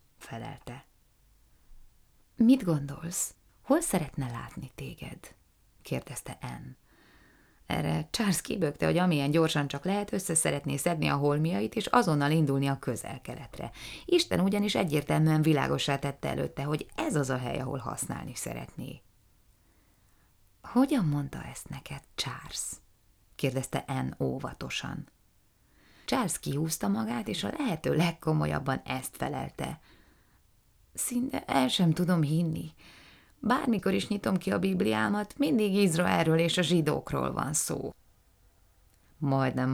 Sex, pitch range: female, 130-180 Hz